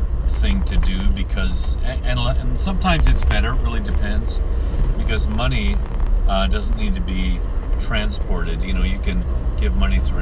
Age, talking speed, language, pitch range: 40-59, 160 wpm, English, 65-75 Hz